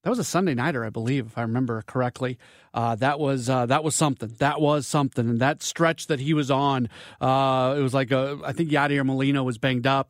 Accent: American